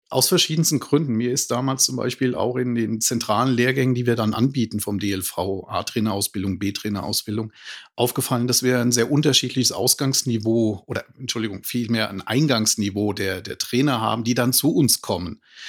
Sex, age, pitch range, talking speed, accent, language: male, 40-59, 110-135 Hz, 165 wpm, German, German